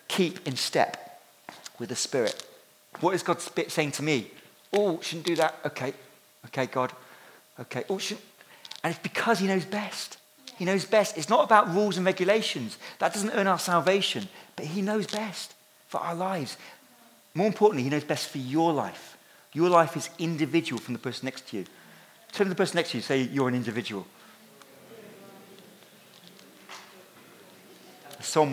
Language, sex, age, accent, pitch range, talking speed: English, male, 50-69, British, 155-200 Hz, 170 wpm